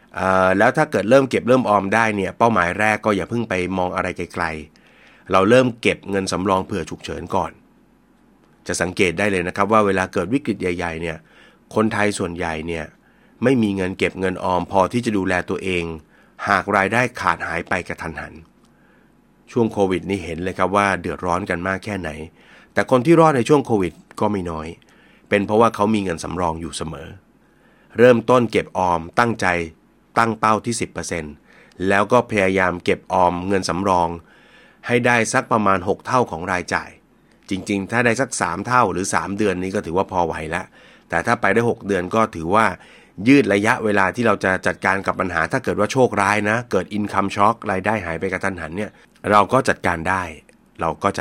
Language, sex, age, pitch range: Thai, male, 30-49, 90-110 Hz